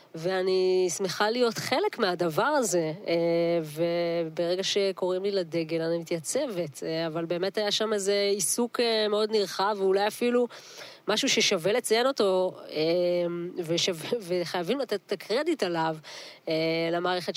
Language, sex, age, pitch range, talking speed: Hebrew, female, 20-39, 175-215 Hz, 115 wpm